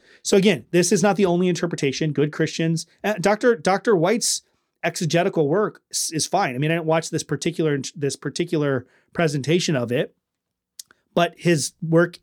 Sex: male